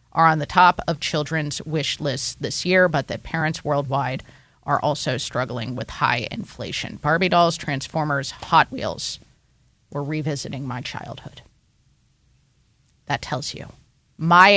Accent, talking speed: American, 135 wpm